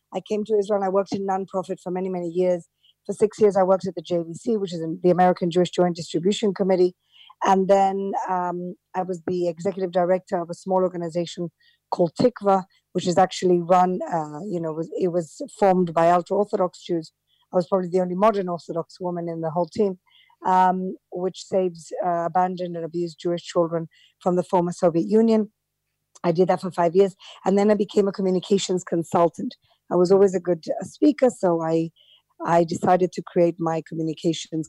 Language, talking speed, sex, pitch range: English, 190 wpm, female, 170-195 Hz